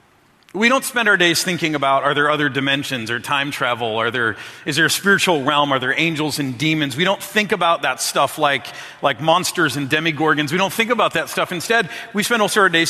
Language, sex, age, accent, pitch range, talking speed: English, male, 40-59, American, 140-175 Hz, 230 wpm